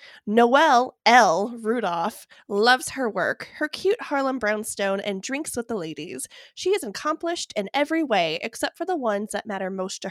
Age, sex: 20-39, female